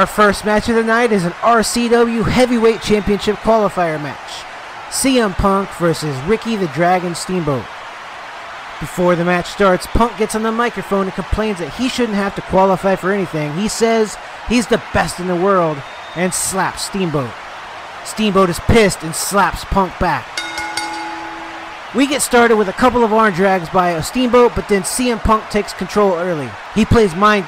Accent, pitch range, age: American, 170-215 Hz, 30-49